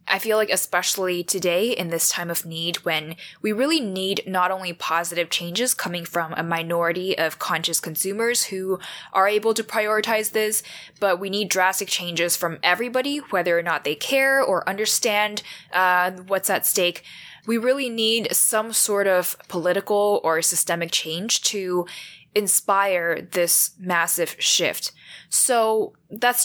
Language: English